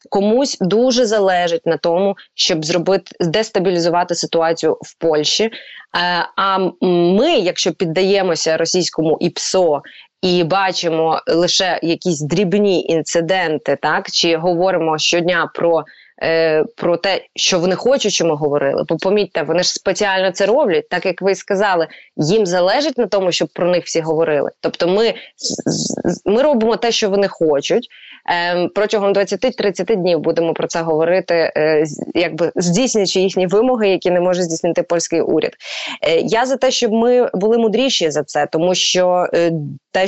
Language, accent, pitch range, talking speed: Ukrainian, native, 165-200 Hz, 140 wpm